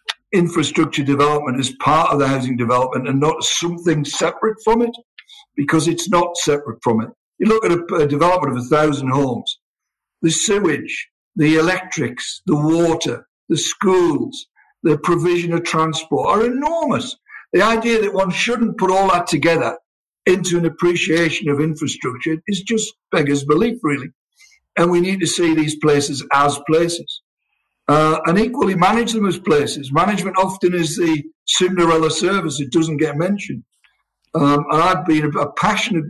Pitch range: 145-180 Hz